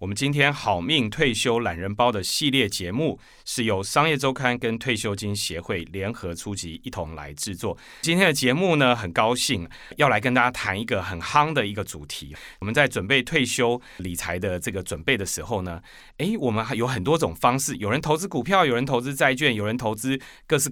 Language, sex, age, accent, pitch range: Chinese, male, 30-49, native, 90-130 Hz